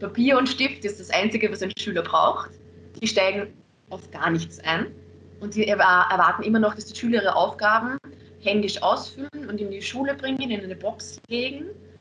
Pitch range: 190-230 Hz